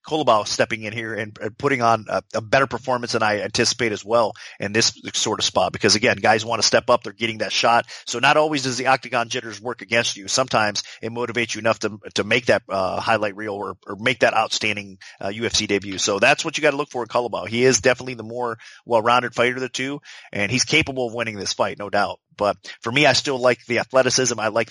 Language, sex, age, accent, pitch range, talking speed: English, male, 30-49, American, 110-130 Hz, 250 wpm